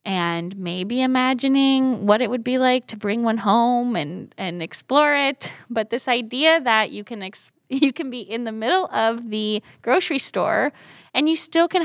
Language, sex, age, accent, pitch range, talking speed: English, female, 10-29, American, 195-250 Hz, 185 wpm